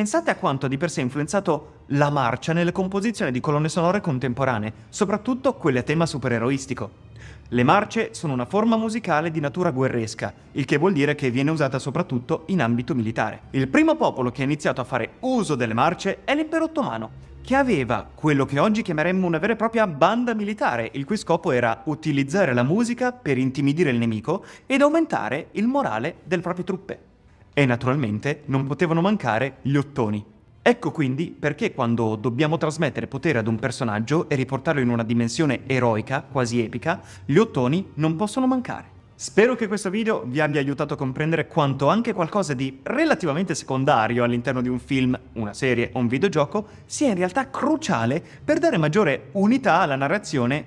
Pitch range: 125-190 Hz